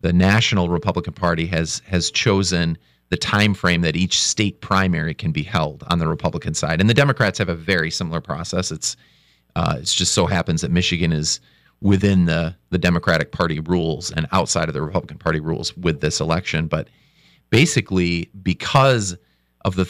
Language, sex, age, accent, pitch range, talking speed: English, male, 40-59, American, 80-100 Hz, 180 wpm